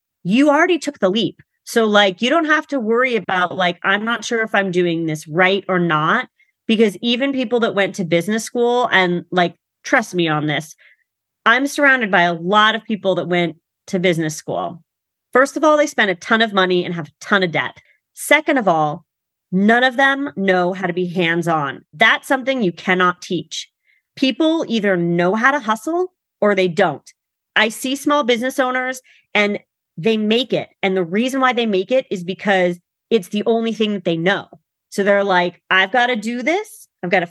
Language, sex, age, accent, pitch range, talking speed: English, female, 30-49, American, 180-245 Hz, 205 wpm